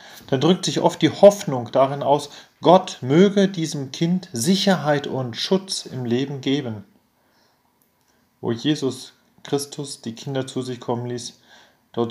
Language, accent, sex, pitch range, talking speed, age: German, German, male, 115-150 Hz, 140 wpm, 40-59